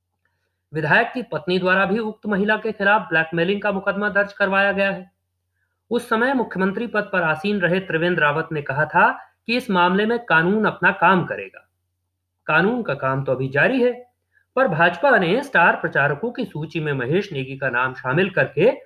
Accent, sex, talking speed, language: native, male, 180 wpm, Hindi